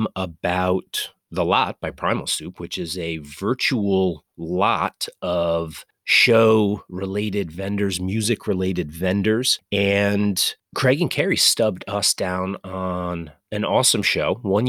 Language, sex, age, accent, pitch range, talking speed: English, male, 30-49, American, 90-125 Hz, 115 wpm